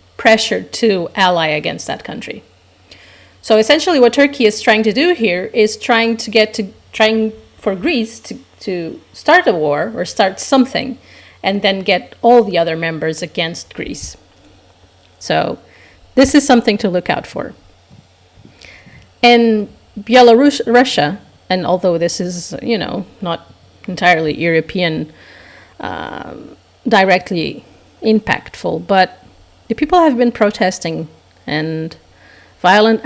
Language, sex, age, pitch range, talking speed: English, female, 40-59, 150-220 Hz, 130 wpm